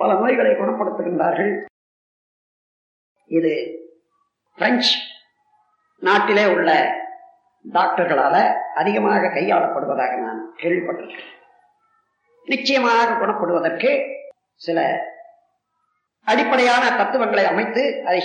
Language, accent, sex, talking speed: Tamil, native, female, 55 wpm